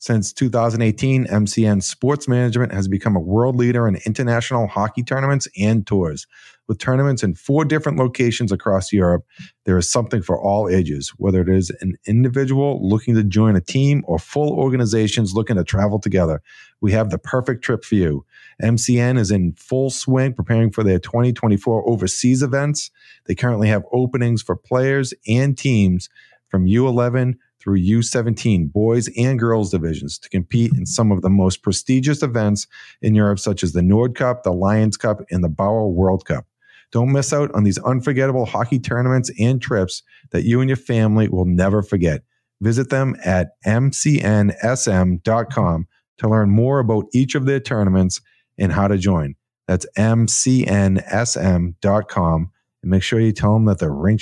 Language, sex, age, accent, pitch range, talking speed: English, male, 40-59, American, 95-125 Hz, 165 wpm